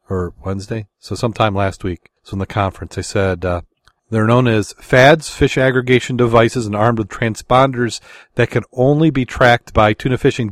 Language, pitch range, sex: English, 105-120 Hz, male